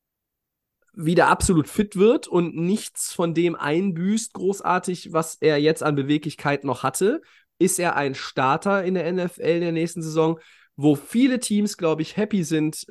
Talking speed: 165 wpm